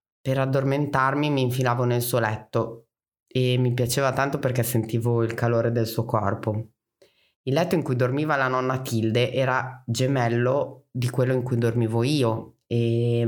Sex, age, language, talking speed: female, 30-49, Italian, 160 wpm